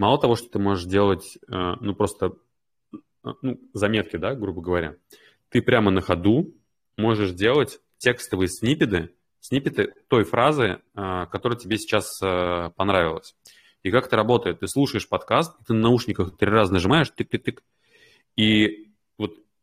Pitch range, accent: 95-115 Hz, native